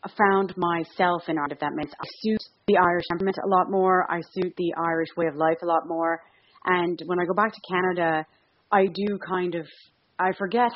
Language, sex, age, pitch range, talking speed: English, female, 30-49, 160-195 Hz, 220 wpm